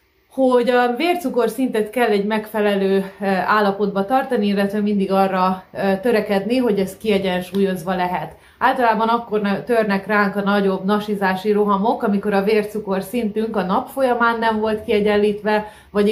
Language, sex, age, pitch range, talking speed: Hungarian, female, 30-49, 190-215 Hz, 135 wpm